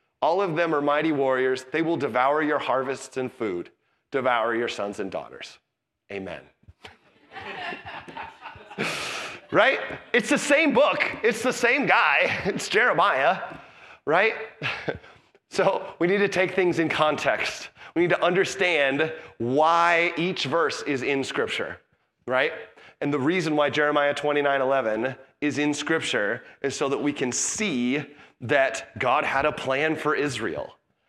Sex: male